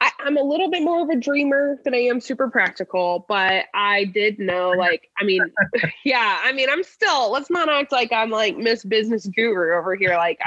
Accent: American